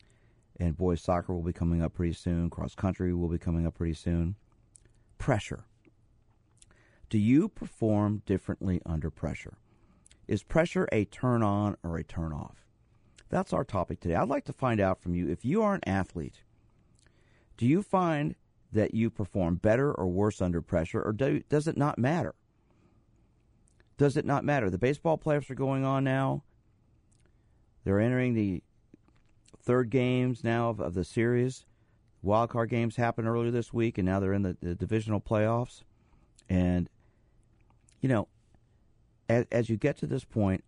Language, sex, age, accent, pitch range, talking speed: English, male, 50-69, American, 95-120 Hz, 160 wpm